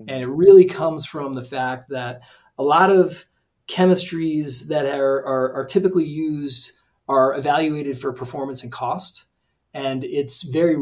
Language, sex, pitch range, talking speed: English, male, 125-150 Hz, 145 wpm